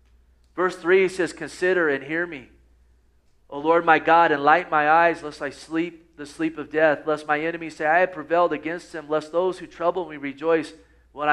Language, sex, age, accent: English, male, 40-59, American